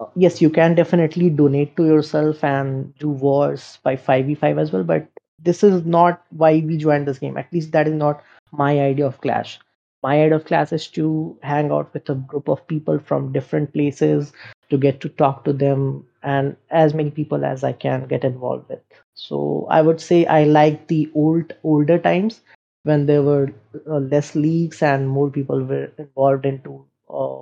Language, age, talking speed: English, 20-39, 195 wpm